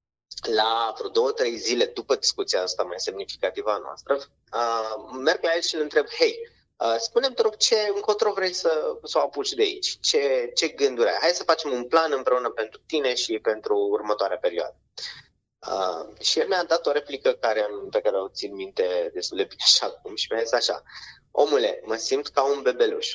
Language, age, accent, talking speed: Romanian, 20-39, native, 200 wpm